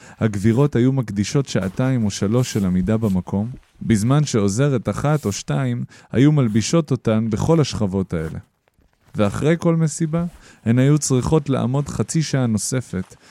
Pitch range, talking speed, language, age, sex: 95-125 Hz, 135 wpm, Hebrew, 20-39, male